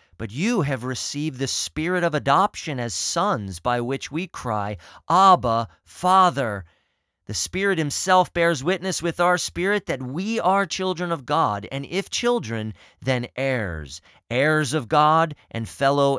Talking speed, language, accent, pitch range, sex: 150 wpm, English, American, 120-170 Hz, male